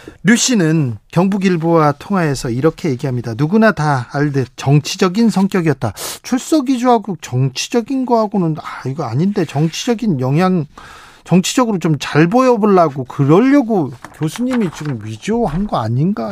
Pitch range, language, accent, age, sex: 145-220 Hz, Korean, native, 40-59, male